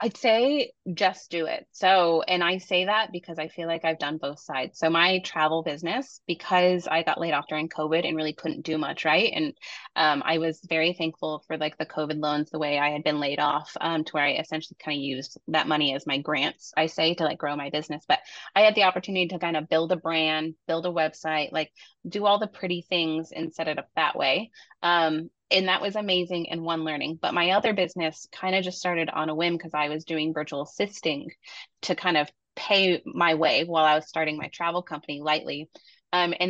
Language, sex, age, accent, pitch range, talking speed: English, female, 20-39, American, 155-180 Hz, 230 wpm